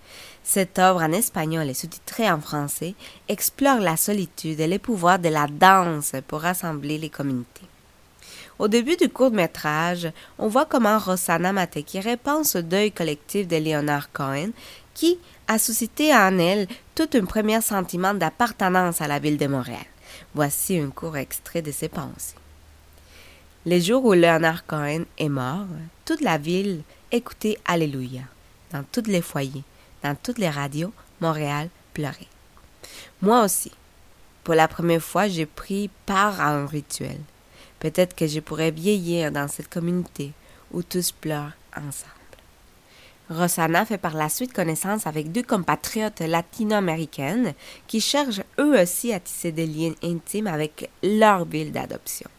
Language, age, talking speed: French, 20-39, 150 wpm